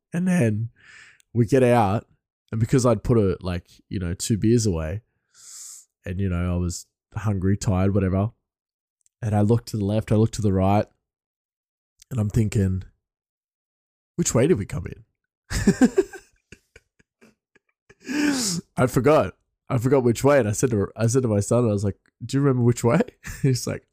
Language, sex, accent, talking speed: English, male, Australian, 165 wpm